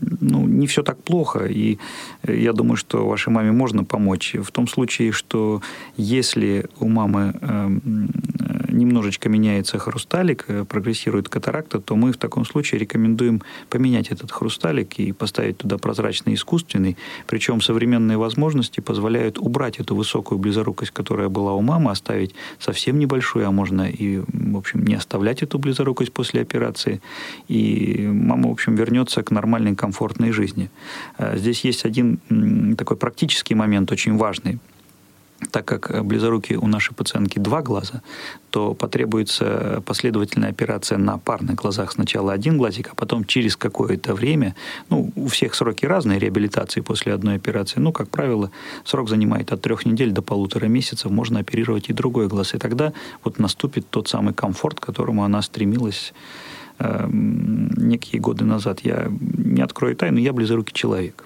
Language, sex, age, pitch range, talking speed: Russian, male, 30-49, 105-125 Hz, 150 wpm